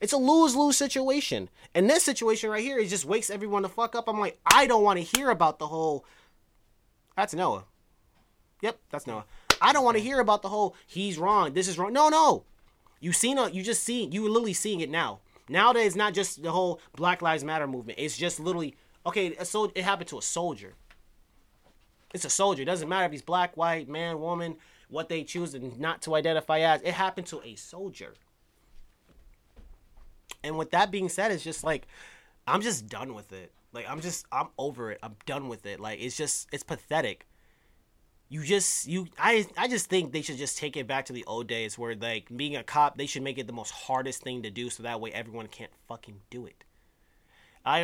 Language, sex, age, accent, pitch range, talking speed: English, male, 20-39, American, 130-195 Hz, 215 wpm